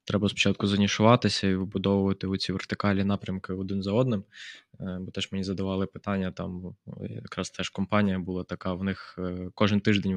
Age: 20-39